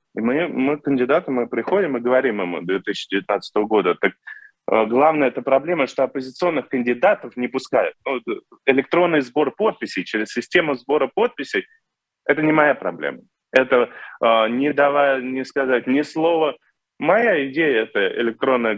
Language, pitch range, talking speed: Russian, 110-150 Hz, 145 wpm